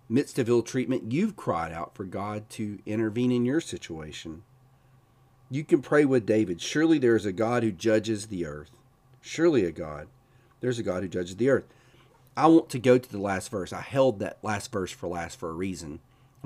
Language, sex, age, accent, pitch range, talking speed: English, male, 40-59, American, 100-130 Hz, 210 wpm